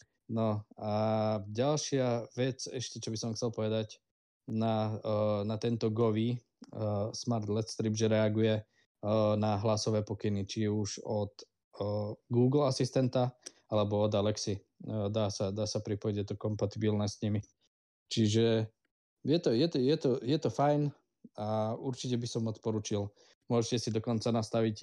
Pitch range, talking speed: 105-115 Hz, 150 wpm